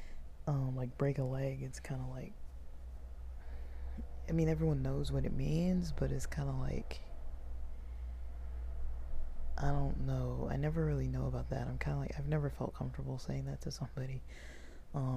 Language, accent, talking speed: English, American, 170 wpm